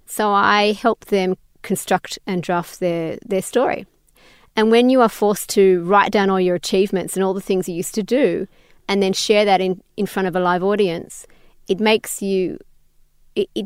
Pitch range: 185-215 Hz